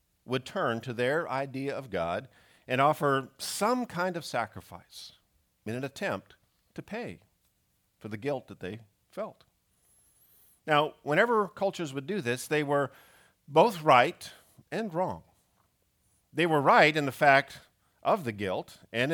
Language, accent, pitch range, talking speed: English, American, 105-150 Hz, 145 wpm